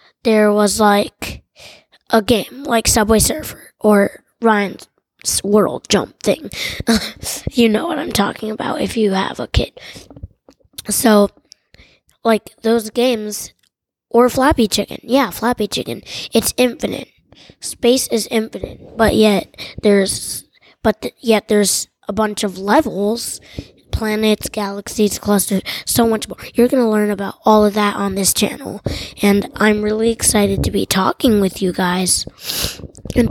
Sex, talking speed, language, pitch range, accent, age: female, 135 wpm, English, 205-230 Hz, American, 20-39